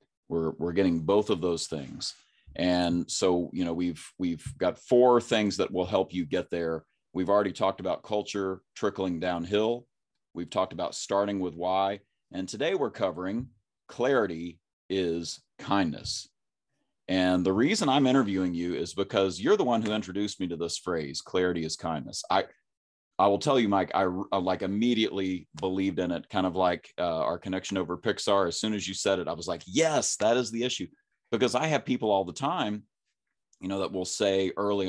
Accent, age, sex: American, 30-49, male